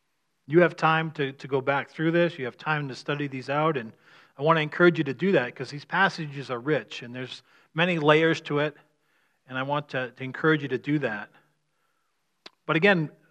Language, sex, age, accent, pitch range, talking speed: English, male, 40-59, American, 135-170 Hz, 215 wpm